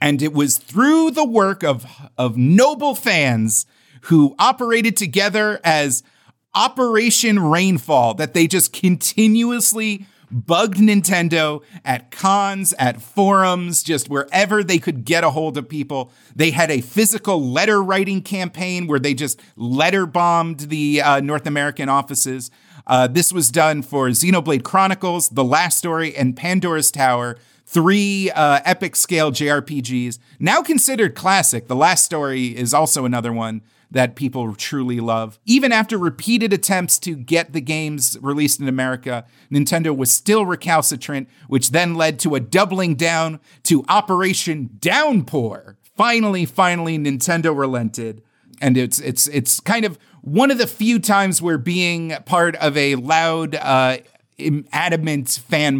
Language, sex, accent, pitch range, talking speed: English, male, American, 135-190 Hz, 140 wpm